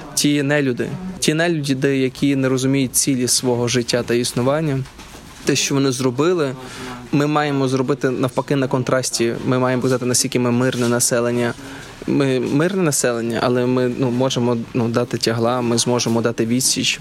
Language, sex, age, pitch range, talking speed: Ukrainian, male, 20-39, 120-135 Hz, 150 wpm